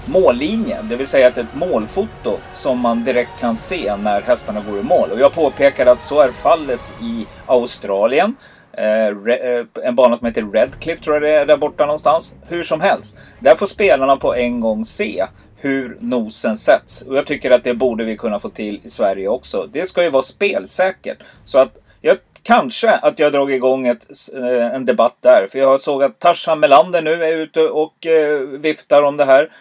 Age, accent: 30-49, native